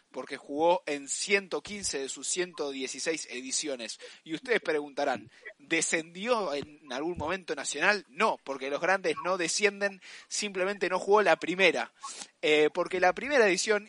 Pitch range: 130-185 Hz